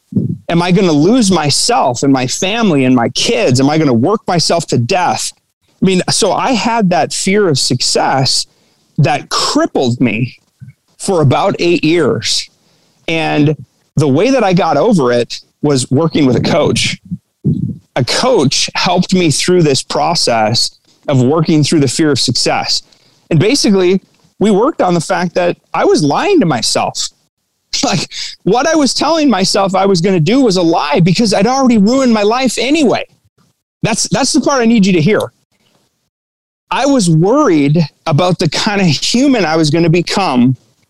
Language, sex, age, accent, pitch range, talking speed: English, male, 30-49, American, 140-195 Hz, 175 wpm